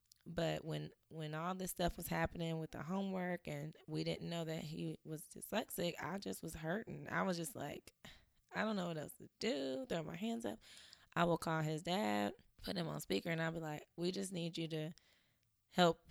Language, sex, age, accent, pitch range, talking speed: English, female, 20-39, American, 145-175 Hz, 210 wpm